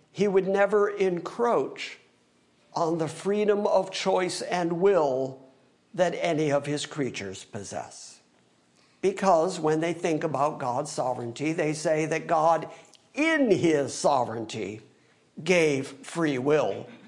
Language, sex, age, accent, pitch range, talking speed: English, male, 50-69, American, 140-180 Hz, 120 wpm